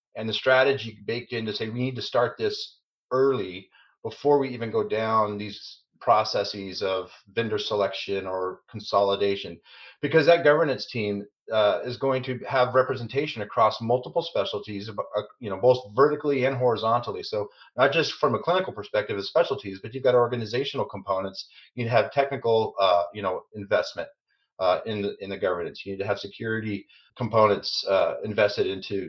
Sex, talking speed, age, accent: male, 165 wpm, 30-49, American